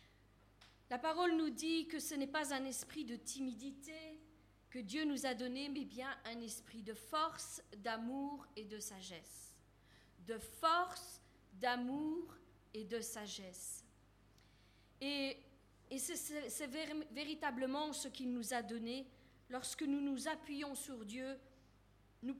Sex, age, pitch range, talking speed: female, 40-59, 235-295 Hz, 130 wpm